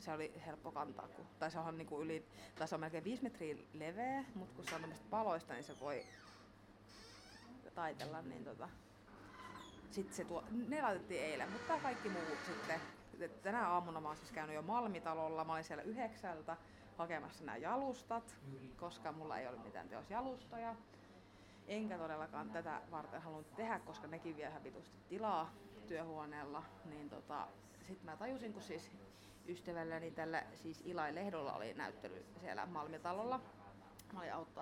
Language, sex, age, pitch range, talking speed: Finnish, female, 30-49, 150-195 Hz, 145 wpm